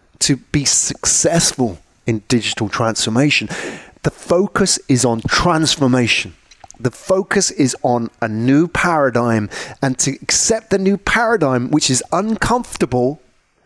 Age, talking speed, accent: 30-49, 120 wpm, British